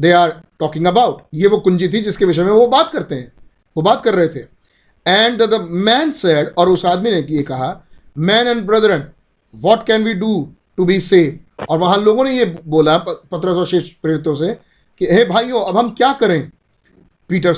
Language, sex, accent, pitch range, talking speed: Hindi, male, native, 160-215 Hz, 200 wpm